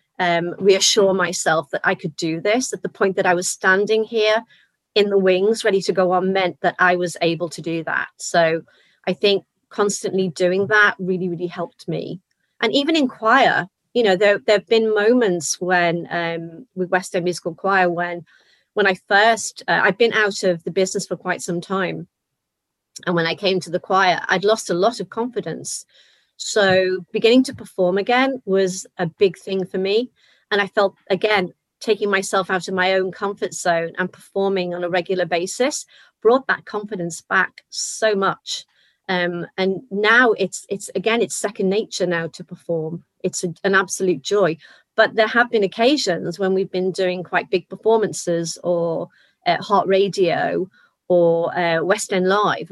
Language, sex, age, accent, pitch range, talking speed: English, female, 30-49, British, 180-210 Hz, 180 wpm